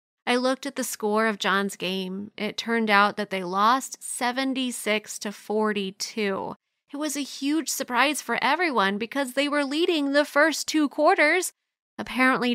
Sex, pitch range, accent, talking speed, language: female, 215-275 Hz, American, 155 wpm, English